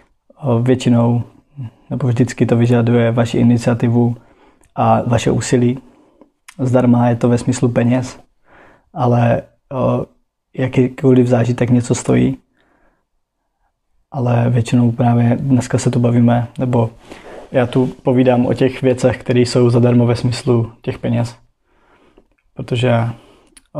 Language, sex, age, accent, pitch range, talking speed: Czech, male, 20-39, native, 120-130 Hz, 110 wpm